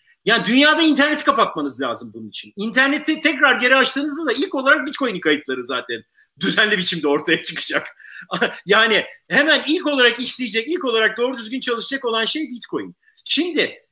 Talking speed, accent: 150 wpm, native